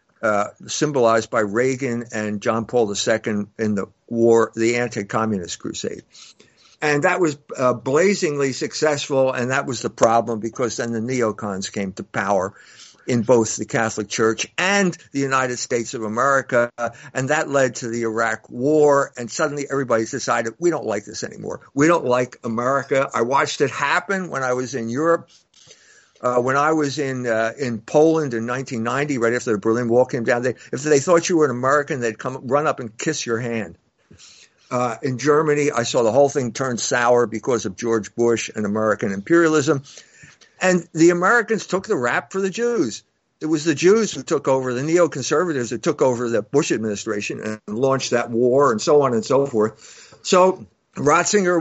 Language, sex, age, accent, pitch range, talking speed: English, male, 50-69, American, 115-150 Hz, 185 wpm